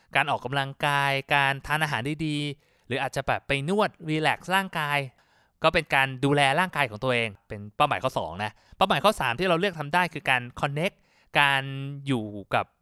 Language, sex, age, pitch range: Thai, male, 20-39, 125-160 Hz